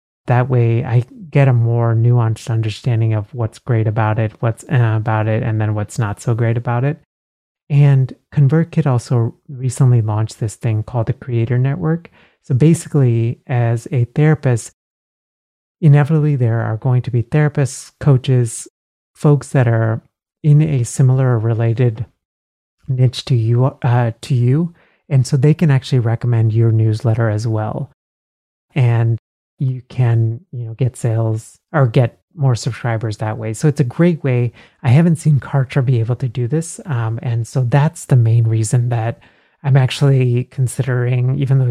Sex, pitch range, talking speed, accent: male, 115-140 Hz, 160 wpm, American